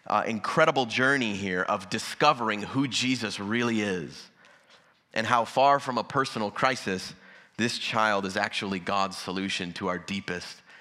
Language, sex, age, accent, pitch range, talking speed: English, male, 30-49, American, 115-155 Hz, 145 wpm